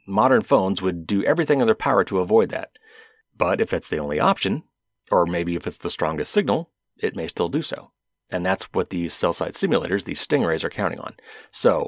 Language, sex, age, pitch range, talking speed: English, male, 30-49, 95-125 Hz, 210 wpm